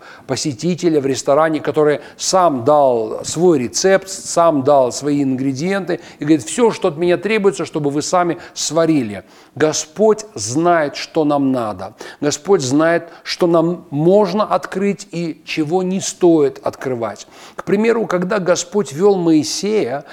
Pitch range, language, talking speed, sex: 155-190 Hz, Russian, 135 wpm, male